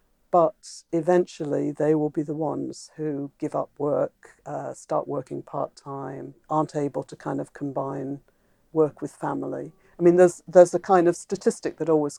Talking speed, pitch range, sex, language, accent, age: 170 wpm, 150-180 Hz, female, English, British, 50-69